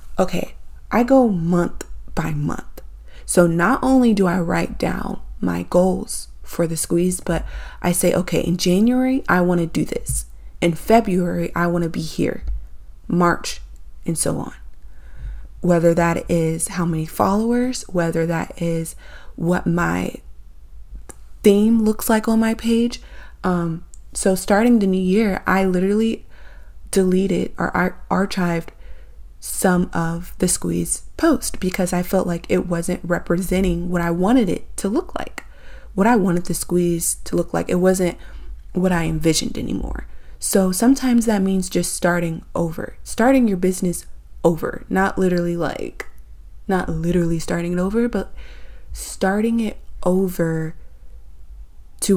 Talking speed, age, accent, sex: 140 wpm, 20-39, American, female